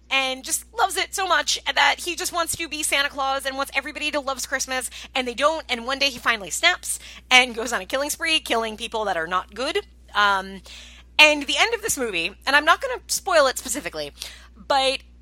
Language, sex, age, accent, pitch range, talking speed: English, female, 30-49, American, 210-305 Hz, 225 wpm